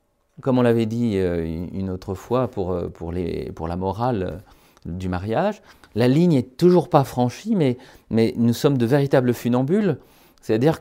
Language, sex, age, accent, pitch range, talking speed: French, male, 40-59, French, 105-150 Hz, 140 wpm